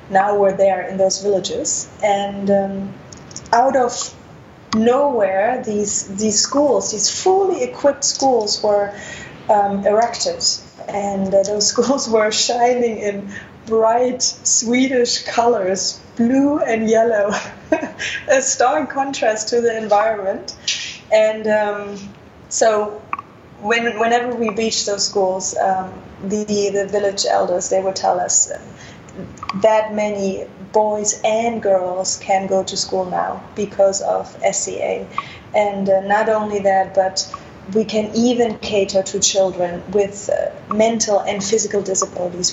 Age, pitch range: 20-39, 195-230 Hz